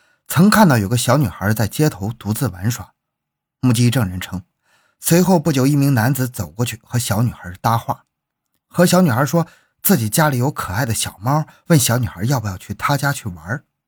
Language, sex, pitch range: Chinese, male, 115-160 Hz